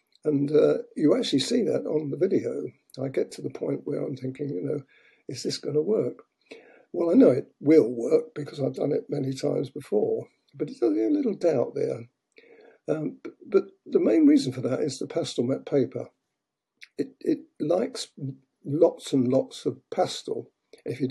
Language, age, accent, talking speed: English, 50-69, British, 185 wpm